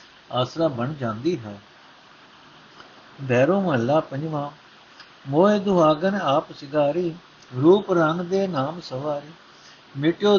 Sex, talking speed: male, 100 wpm